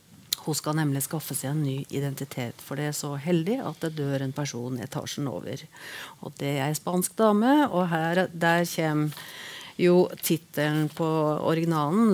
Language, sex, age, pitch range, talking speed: English, female, 40-59, 145-180 Hz, 185 wpm